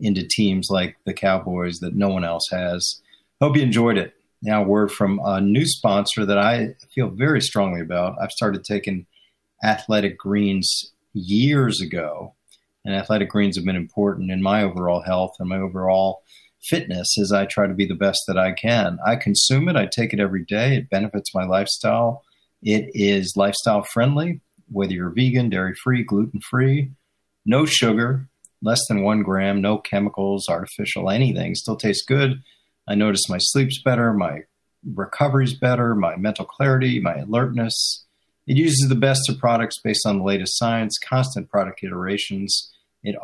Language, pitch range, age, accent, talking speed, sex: English, 100-125 Hz, 40-59, American, 165 wpm, male